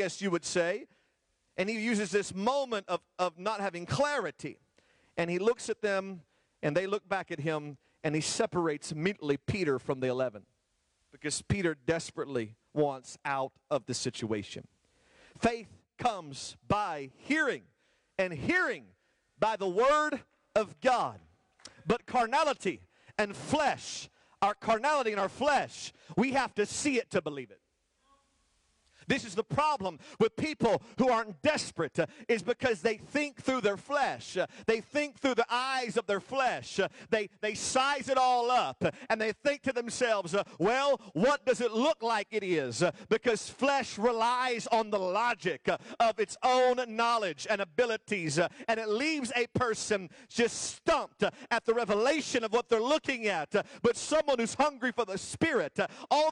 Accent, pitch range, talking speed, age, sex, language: American, 185-255 Hz, 155 wpm, 50-69, male, English